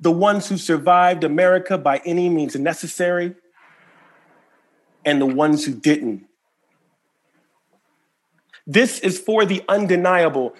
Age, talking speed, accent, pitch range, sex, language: 40-59, 110 wpm, American, 150-190 Hz, male, English